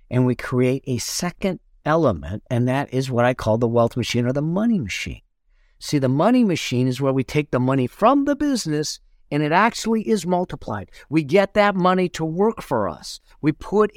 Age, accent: 50-69, American